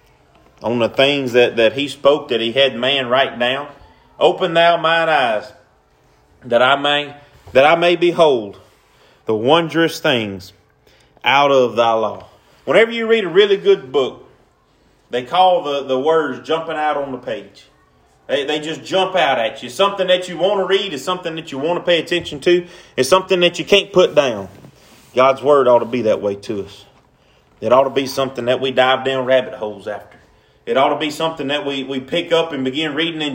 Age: 30-49